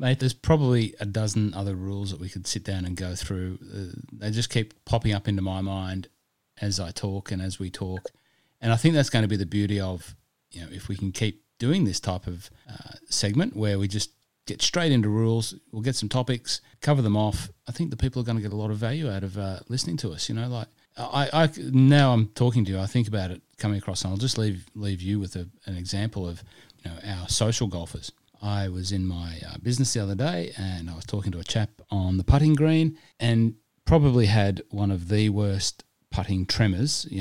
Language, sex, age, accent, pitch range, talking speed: English, male, 30-49, Australian, 95-120 Hz, 235 wpm